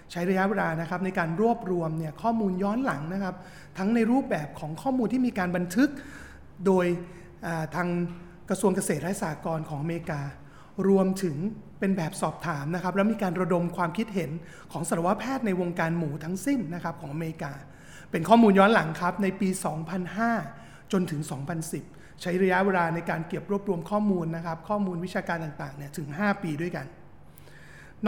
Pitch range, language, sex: 165-200 Hz, Thai, male